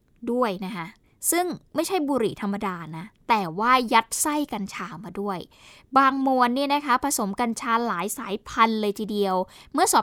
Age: 10-29